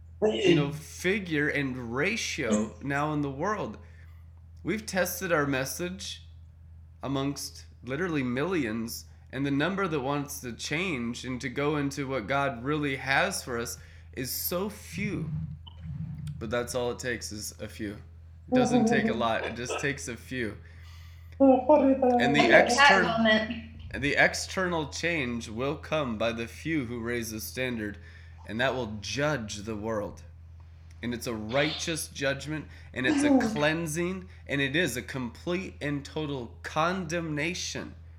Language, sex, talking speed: English, male, 145 wpm